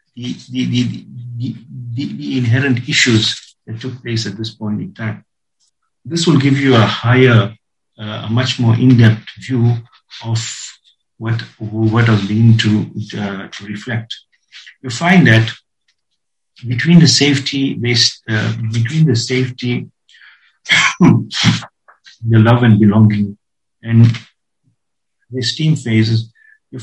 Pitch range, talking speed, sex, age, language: 110-130 Hz, 125 wpm, male, 50-69, English